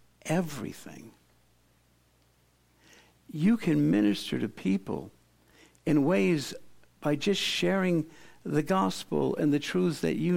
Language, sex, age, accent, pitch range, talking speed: English, male, 60-79, American, 120-175 Hz, 105 wpm